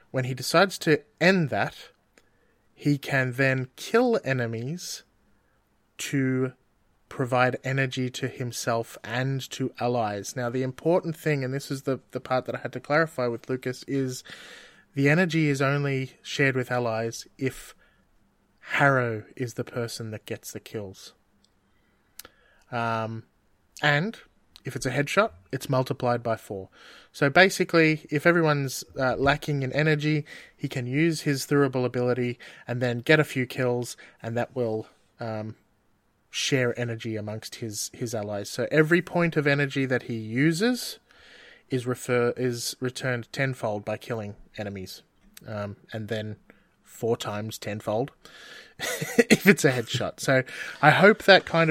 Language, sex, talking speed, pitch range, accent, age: English, male, 145 wpm, 120-145 Hz, Australian, 20-39